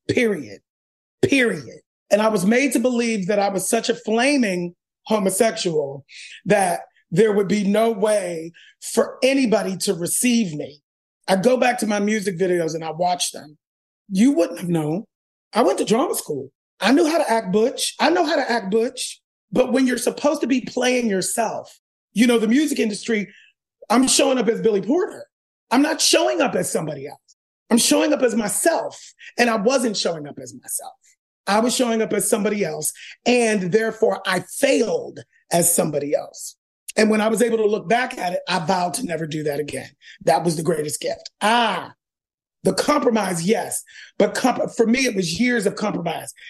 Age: 30-49